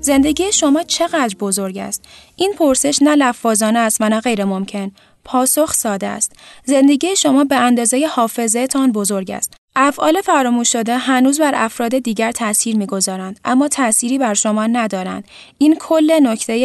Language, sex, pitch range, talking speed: Persian, female, 215-270 Hz, 150 wpm